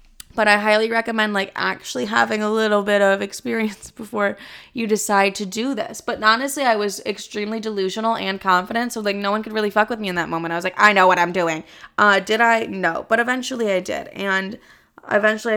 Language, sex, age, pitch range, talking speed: English, female, 20-39, 185-220 Hz, 215 wpm